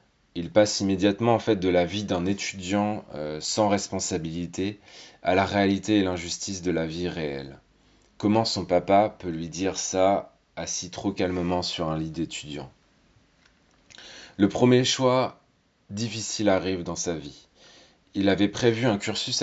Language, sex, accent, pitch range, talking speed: French, male, French, 85-105 Hz, 150 wpm